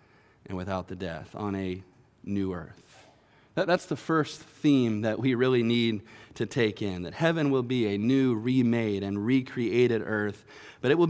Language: English